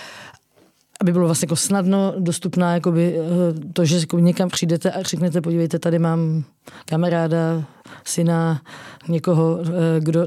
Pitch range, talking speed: 170-185 Hz, 125 wpm